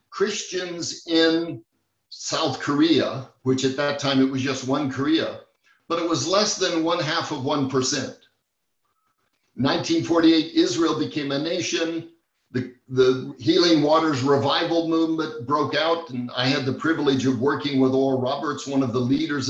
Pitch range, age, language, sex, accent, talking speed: 135-160 Hz, 60-79, English, male, American, 150 wpm